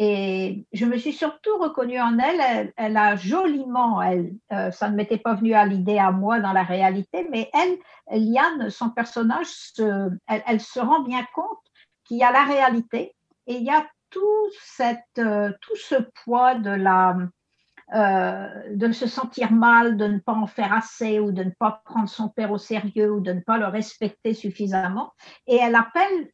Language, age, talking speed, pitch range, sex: French, 60-79, 195 wpm, 205-255 Hz, female